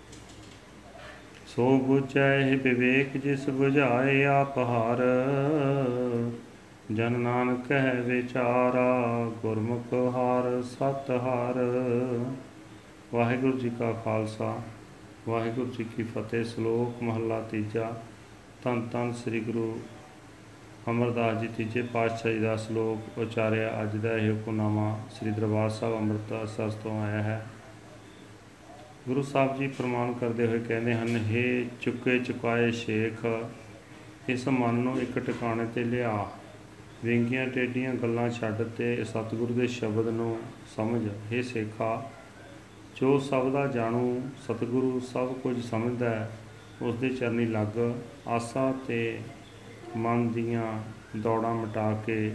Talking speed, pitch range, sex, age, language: 110 wpm, 110-125 Hz, male, 40-59, Punjabi